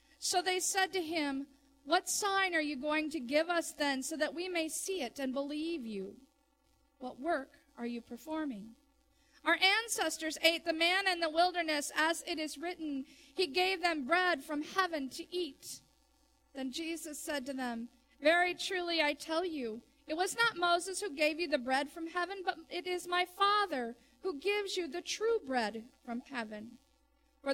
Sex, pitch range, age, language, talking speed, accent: female, 275-340 Hz, 40-59, English, 180 wpm, American